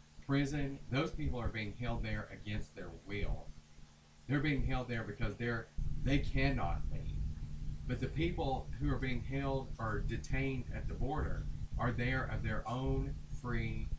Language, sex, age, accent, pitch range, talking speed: English, male, 40-59, American, 100-130 Hz, 160 wpm